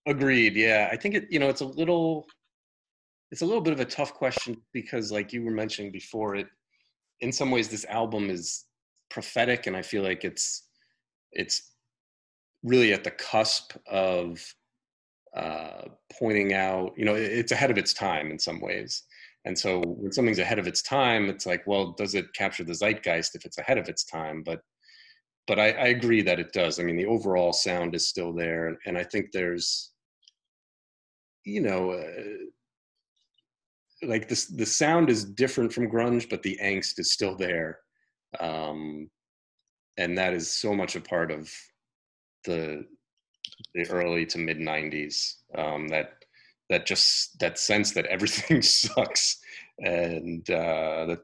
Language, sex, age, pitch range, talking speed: English, male, 30-49, 85-120 Hz, 165 wpm